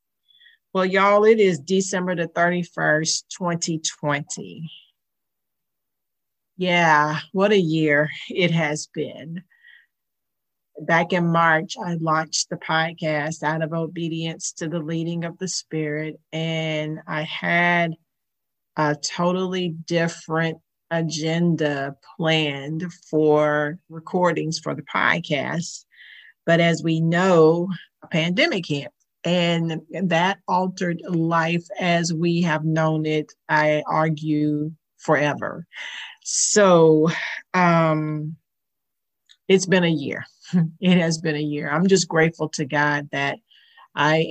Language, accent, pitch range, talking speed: English, American, 155-175 Hz, 110 wpm